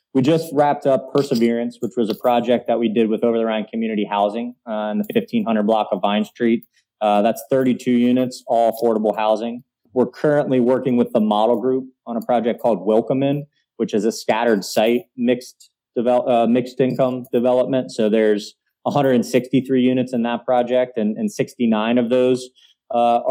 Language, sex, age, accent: English, male, 20-39, American